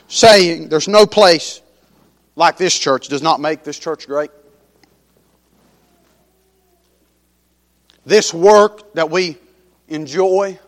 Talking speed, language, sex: 100 wpm, English, male